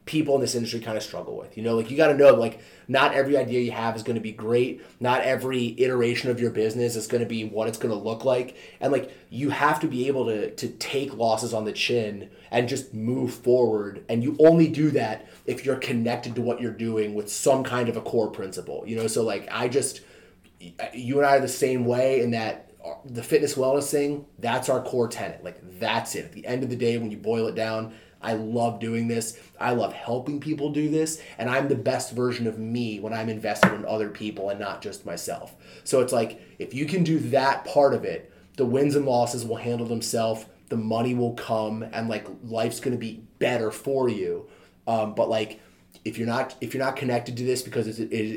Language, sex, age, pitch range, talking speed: English, male, 30-49, 110-130 Hz, 230 wpm